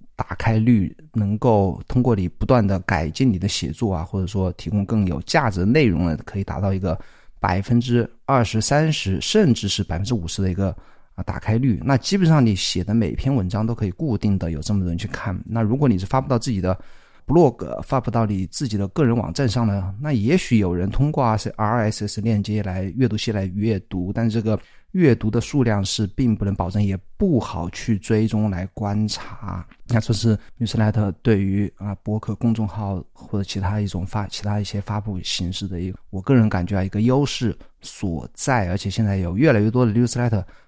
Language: Chinese